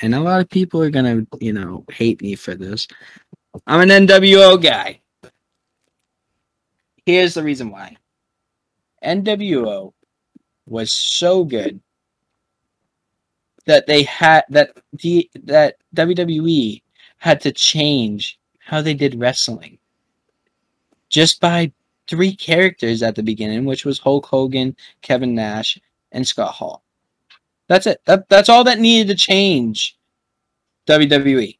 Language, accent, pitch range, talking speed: English, American, 115-160 Hz, 125 wpm